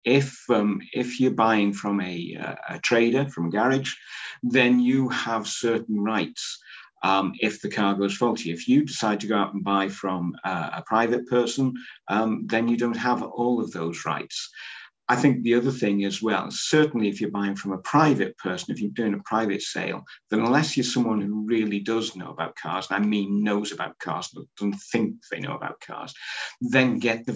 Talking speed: 205 wpm